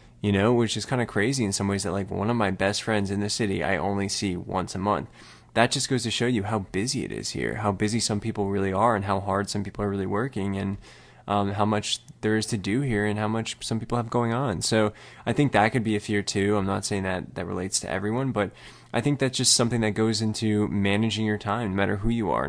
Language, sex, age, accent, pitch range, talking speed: English, male, 20-39, American, 100-110 Hz, 270 wpm